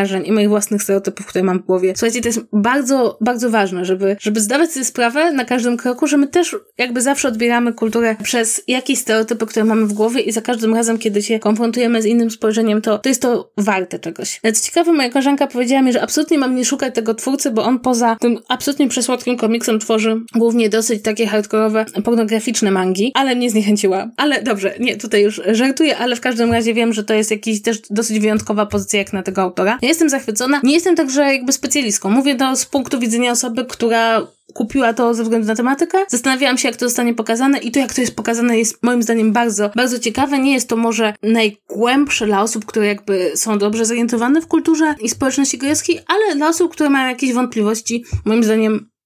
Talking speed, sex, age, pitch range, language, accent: 210 wpm, female, 20-39, 220-265 Hz, Polish, native